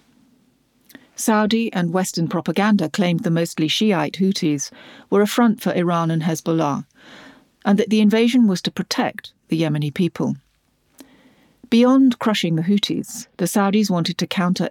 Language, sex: English, female